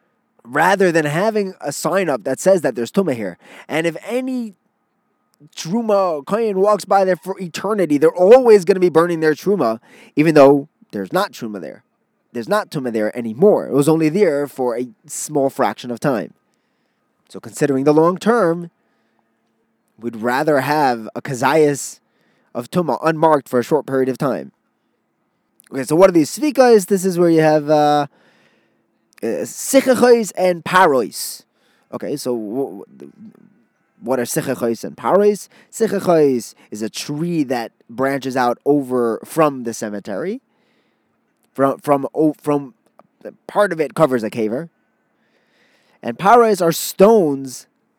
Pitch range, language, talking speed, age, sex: 130-195 Hz, English, 145 wpm, 20-39, male